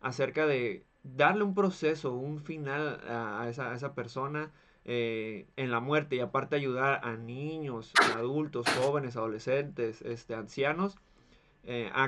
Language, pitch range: Spanish, 125-155 Hz